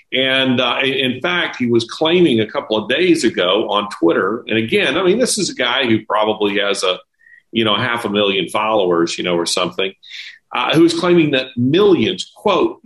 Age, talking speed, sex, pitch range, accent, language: 40-59, 200 wpm, male, 110-155 Hz, American, English